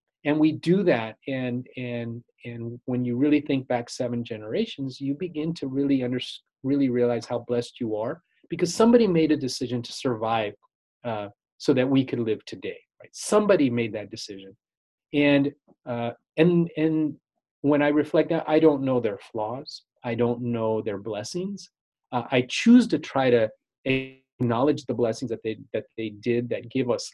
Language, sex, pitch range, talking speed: English, male, 115-140 Hz, 175 wpm